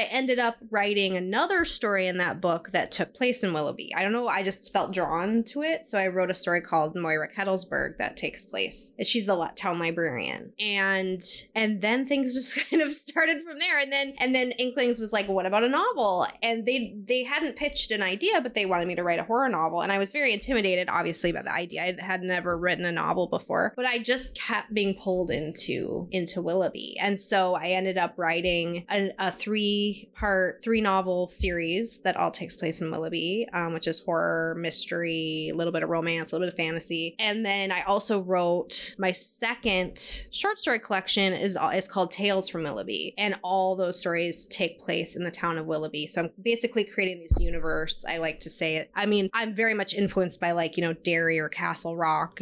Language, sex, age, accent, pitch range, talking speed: English, female, 20-39, American, 170-220 Hz, 215 wpm